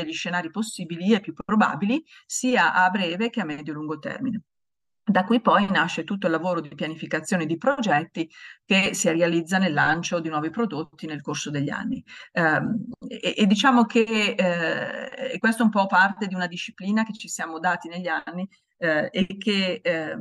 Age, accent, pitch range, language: 40-59, native, 165-205 Hz, Italian